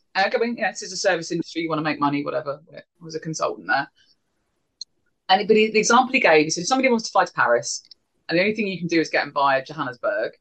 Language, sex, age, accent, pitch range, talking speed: English, female, 30-49, British, 155-210 Hz, 235 wpm